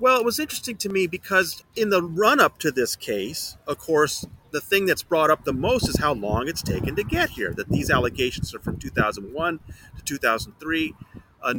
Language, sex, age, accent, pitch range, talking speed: English, male, 30-49, American, 140-210 Hz, 195 wpm